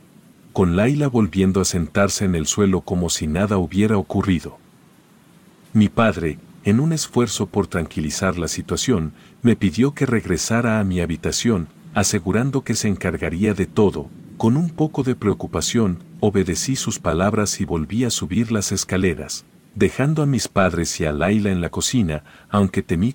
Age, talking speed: 50-69, 160 wpm